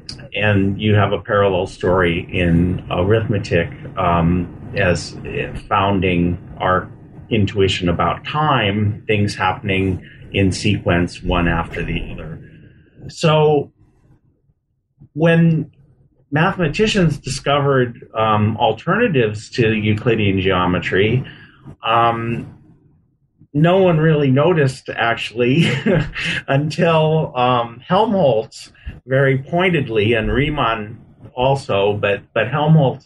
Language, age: English, 40-59